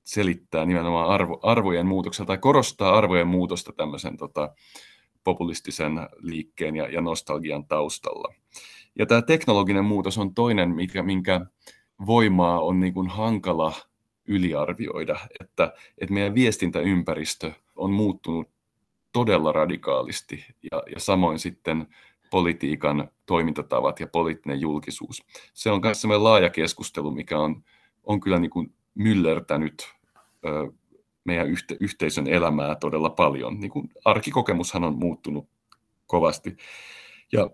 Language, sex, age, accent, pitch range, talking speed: Finnish, male, 30-49, native, 85-110 Hz, 110 wpm